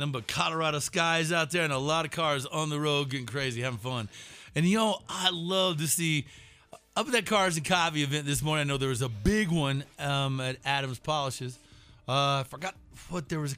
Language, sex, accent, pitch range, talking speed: English, male, American, 135-185 Hz, 225 wpm